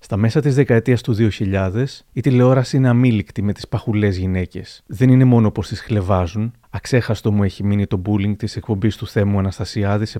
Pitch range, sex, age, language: 105-125 Hz, male, 30-49, Greek